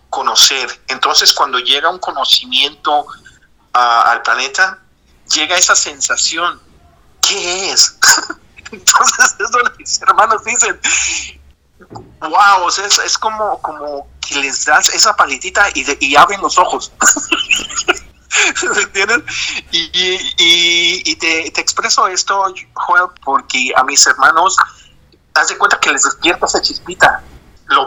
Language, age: Spanish, 50-69